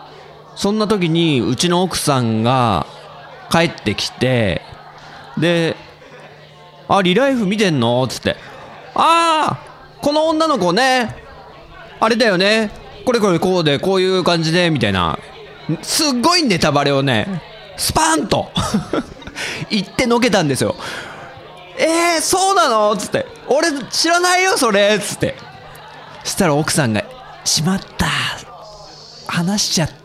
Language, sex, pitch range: Japanese, male, 155-230 Hz